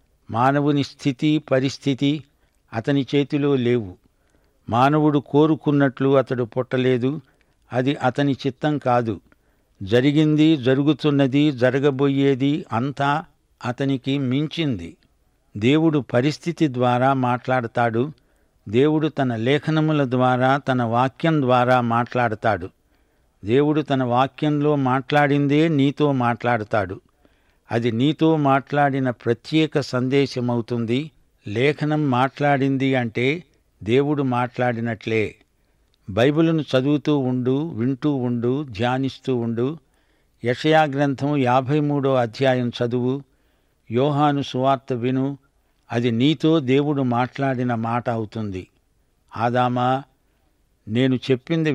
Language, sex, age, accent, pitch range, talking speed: Telugu, male, 60-79, native, 120-145 Hz, 80 wpm